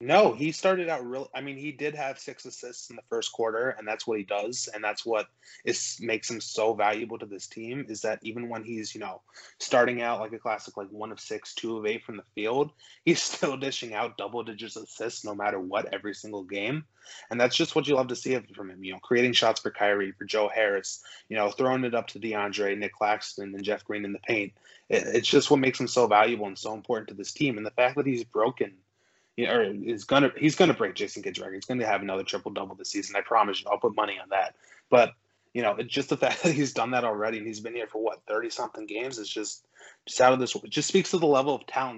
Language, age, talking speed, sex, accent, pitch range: English, 20-39, 260 wpm, male, American, 105-140 Hz